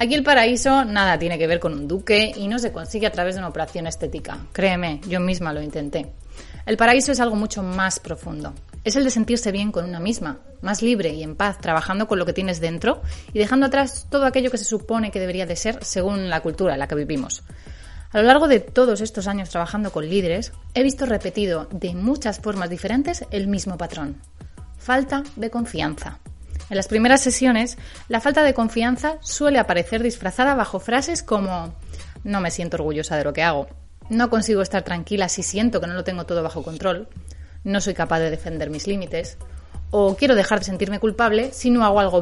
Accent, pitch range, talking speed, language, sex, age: Spanish, 165-225 Hz, 205 wpm, Spanish, female, 30-49